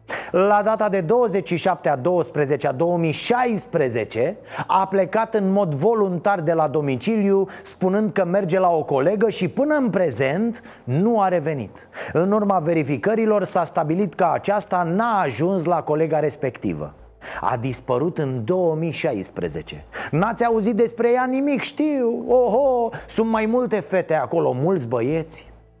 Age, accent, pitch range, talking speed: 30-49, native, 170-245 Hz, 135 wpm